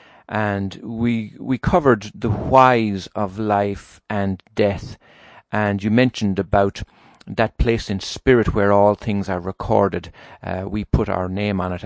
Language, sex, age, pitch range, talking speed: English, male, 50-69, 95-110 Hz, 150 wpm